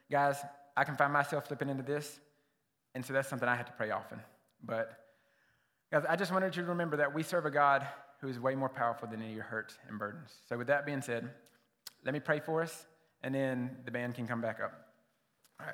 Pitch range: 135-170 Hz